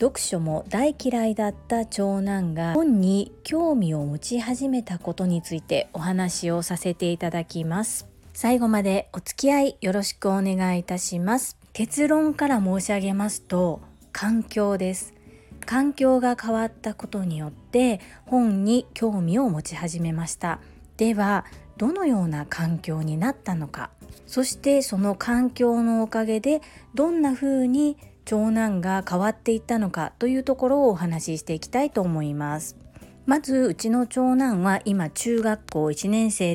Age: 40-59